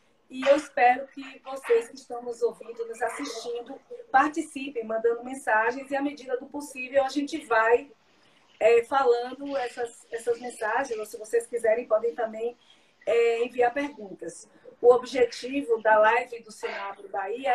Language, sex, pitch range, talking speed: Portuguese, female, 235-290 Hz, 145 wpm